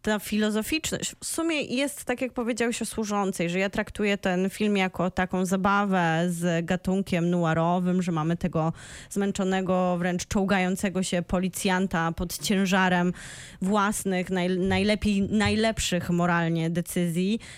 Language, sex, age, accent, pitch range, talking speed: Polish, female, 20-39, native, 185-230 Hz, 125 wpm